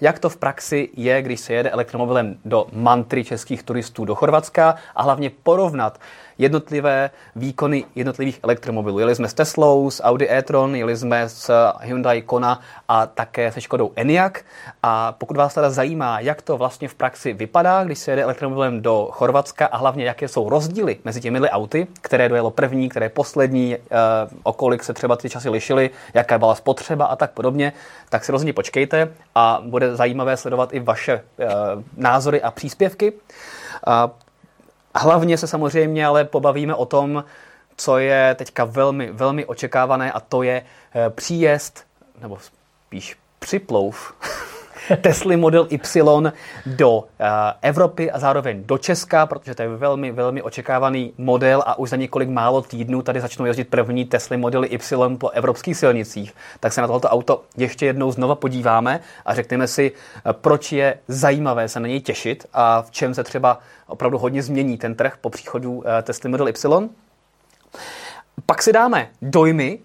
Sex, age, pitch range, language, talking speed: male, 30-49, 120-145 Hz, Czech, 160 wpm